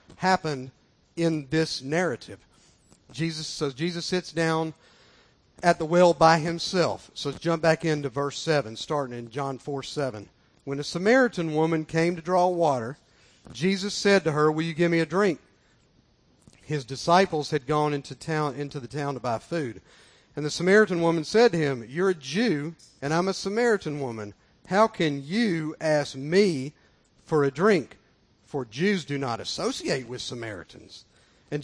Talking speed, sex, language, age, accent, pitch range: 165 wpm, male, English, 50-69, American, 140-175 Hz